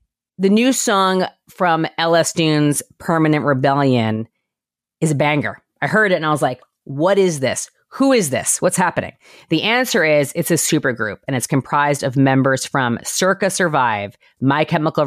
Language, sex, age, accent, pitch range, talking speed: English, female, 30-49, American, 135-175 Hz, 170 wpm